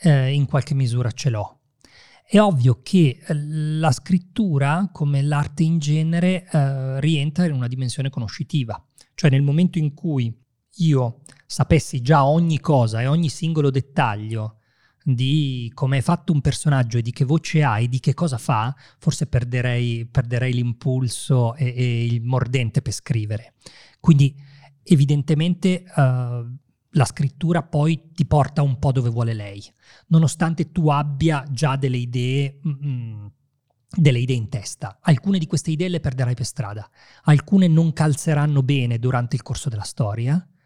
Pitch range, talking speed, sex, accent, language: 125-160 Hz, 155 wpm, male, native, Italian